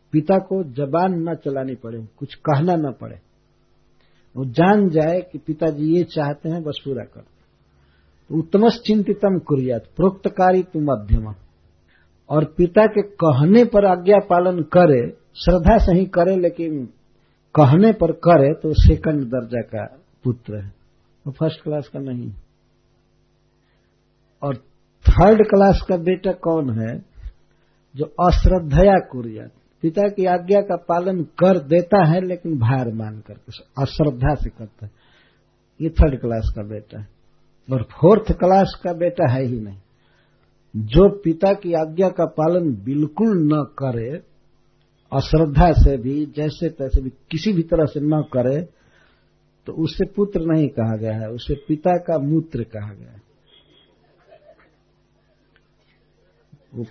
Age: 60-79